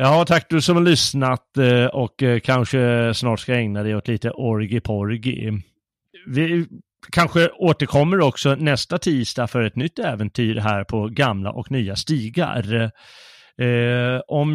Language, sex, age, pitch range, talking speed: Swedish, male, 30-49, 110-145 Hz, 135 wpm